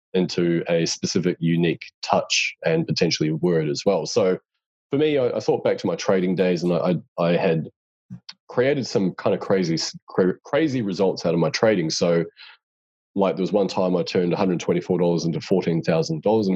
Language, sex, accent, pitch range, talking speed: English, male, Australian, 85-120 Hz, 180 wpm